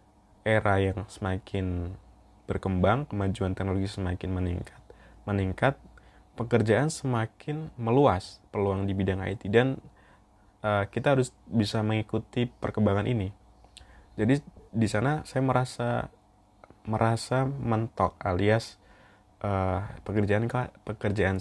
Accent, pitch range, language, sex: native, 95-110 Hz, Indonesian, male